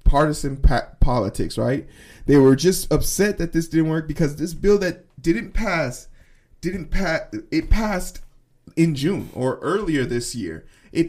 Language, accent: English, American